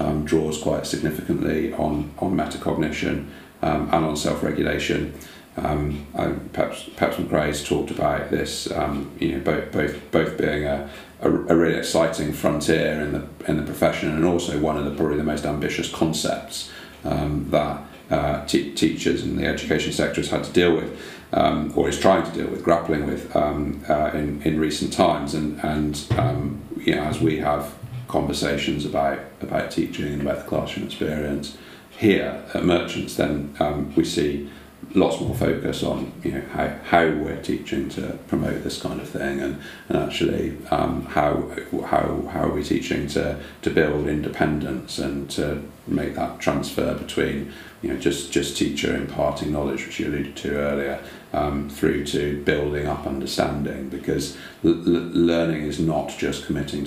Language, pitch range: English, 70-75 Hz